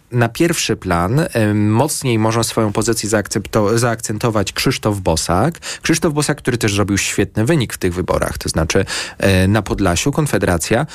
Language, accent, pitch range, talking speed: Polish, native, 100-135 Hz, 155 wpm